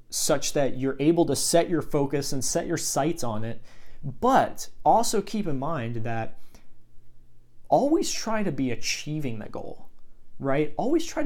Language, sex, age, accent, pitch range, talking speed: English, male, 30-49, American, 120-160 Hz, 160 wpm